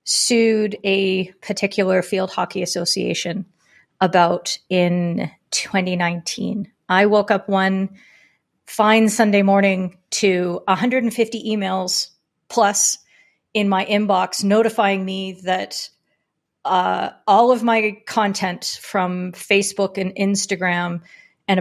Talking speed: 100 wpm